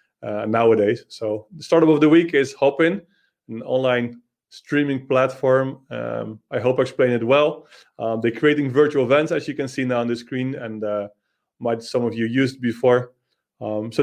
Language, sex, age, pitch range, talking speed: English, male, 20-39, 115-135 Hz, 190 wpm